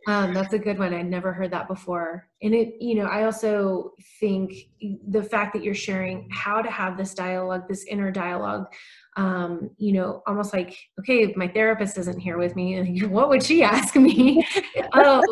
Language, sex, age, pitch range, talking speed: English, female, 30-49, 185-215 Hz, 190 wpm